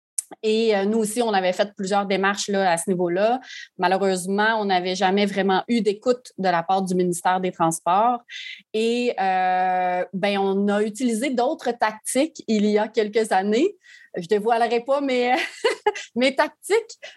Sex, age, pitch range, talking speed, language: female, 30-49, 190-230 Hz, 160 wpm, French